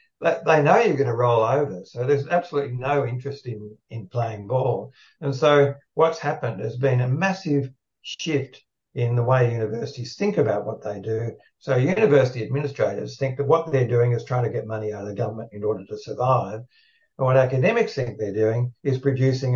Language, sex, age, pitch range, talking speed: English, male, 60-79, 110-140 Hz, 195 wpm